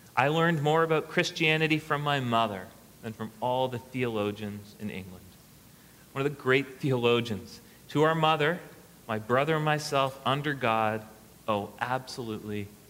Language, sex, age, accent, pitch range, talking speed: English, male, 30-49, American, 110-140 Hz, 145 wpm